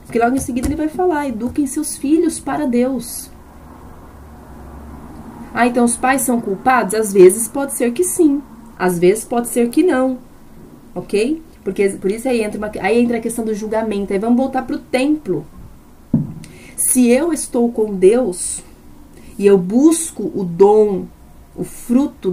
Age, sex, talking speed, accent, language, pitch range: 30-49, female, 165 wpm, Brazilian, Portuguese, 195-260 Hz